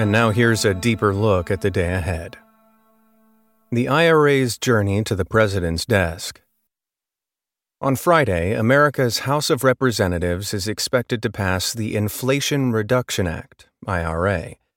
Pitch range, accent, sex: 95-125 Hz, American, male